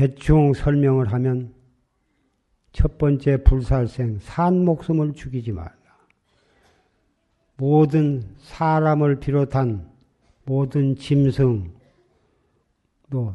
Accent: native